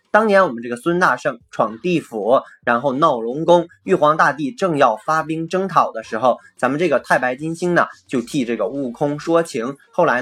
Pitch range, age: 125-175 Hz, 20-39